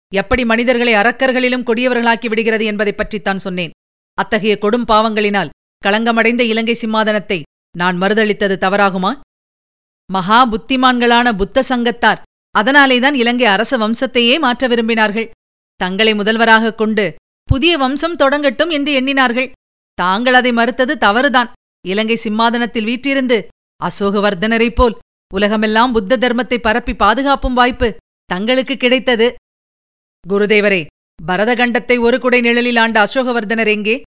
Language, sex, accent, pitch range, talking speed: Tamil, female, native, 205-245 Hz, 105 wpm